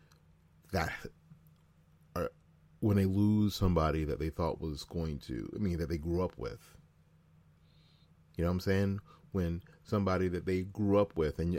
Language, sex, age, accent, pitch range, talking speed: English, male, 40-59, American, 75-85 Hz, 165 wpm